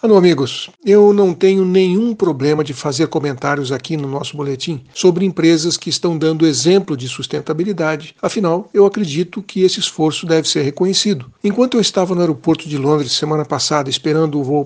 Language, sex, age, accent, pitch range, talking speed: Portuguese, male, 60-79, Brazilian, 150-185 Hz, 175 wpm